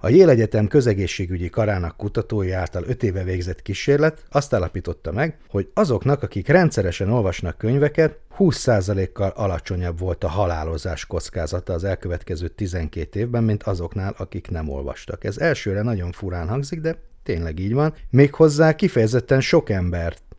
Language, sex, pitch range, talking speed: Hungarian, male, 90-125 Hz, 140 wpm